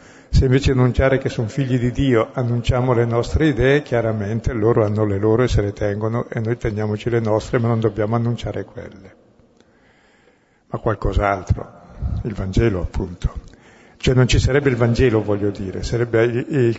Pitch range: 110-130 Hz